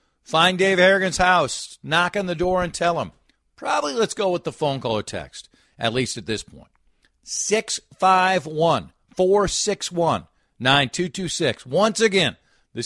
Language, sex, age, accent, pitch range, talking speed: English, male, 50-69, American, 105-175 Hz, 135 wpm